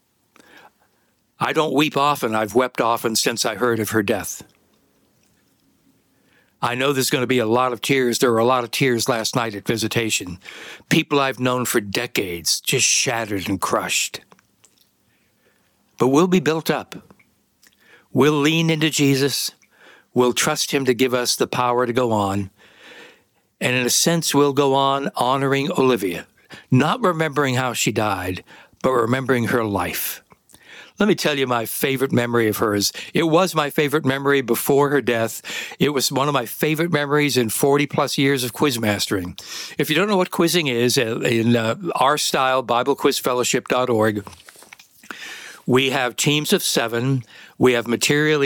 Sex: male